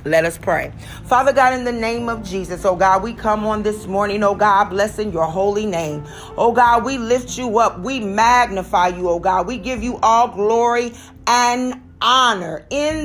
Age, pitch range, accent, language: 40-59, 205-260 Hz, American, English